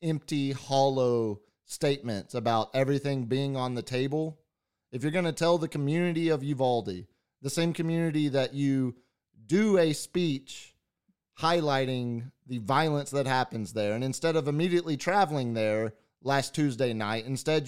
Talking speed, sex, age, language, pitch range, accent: 145 wpm, male, 30-49, English, 130-170 Hz, American